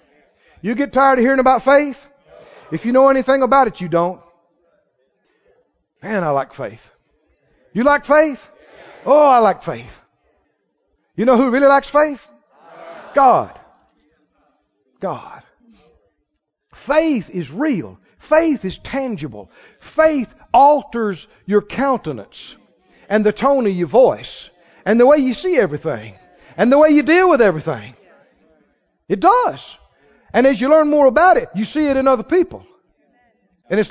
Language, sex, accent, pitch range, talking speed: English, male, American, 175-275 Hz, 140 wpm